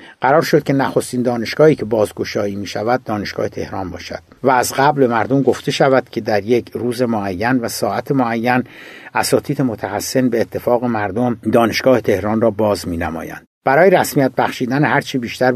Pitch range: 110-140 Hz